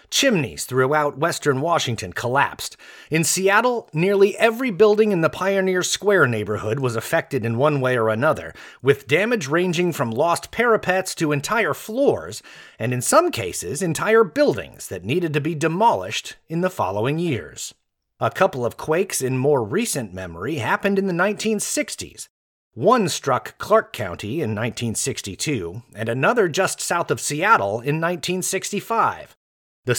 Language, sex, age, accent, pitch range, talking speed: English, male, 30-49, American, 115-185 Hz, 145 wpm